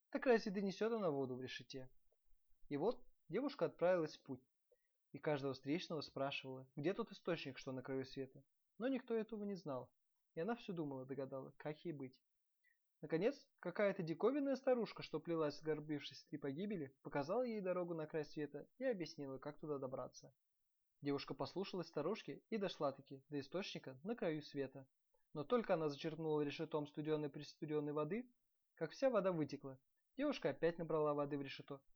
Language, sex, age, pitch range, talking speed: Russian, male, 20-39, 140-200 Hz, 160 wpm